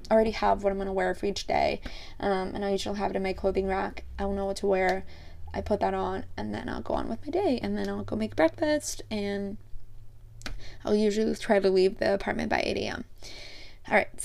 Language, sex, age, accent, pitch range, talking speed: English, female, 20-39, American, 185-215 Hz, 235 wpm